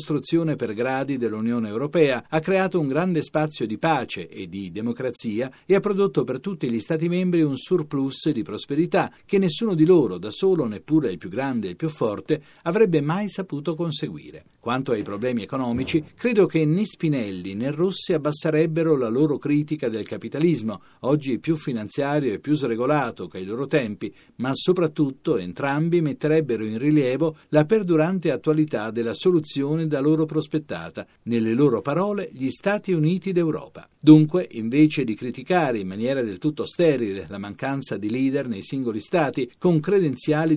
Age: 50-69